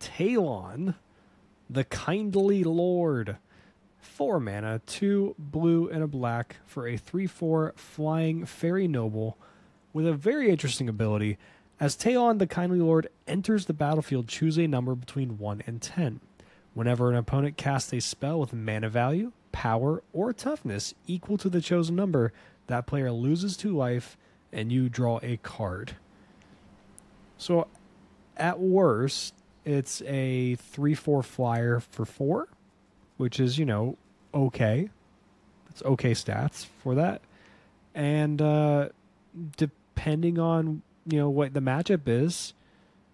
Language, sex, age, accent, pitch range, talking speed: English, male, 20-39, American, 120-160 Hz, 130 wpm